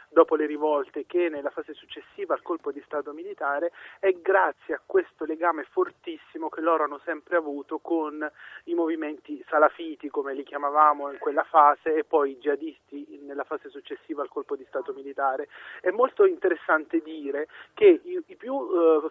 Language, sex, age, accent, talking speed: Italian, male, 30-49, native, 165 wpm